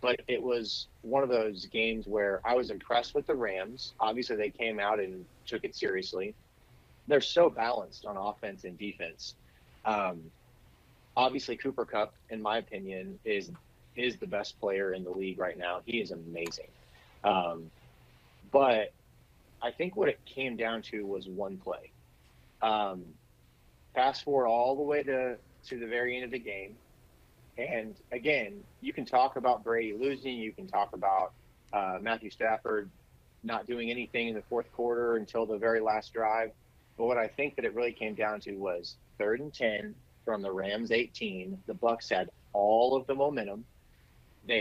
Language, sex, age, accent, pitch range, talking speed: English, male, 30-49, American, 100-125 Hz, 170 wpm